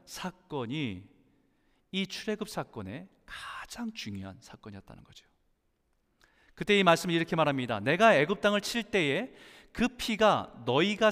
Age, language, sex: 40-59, Korean, male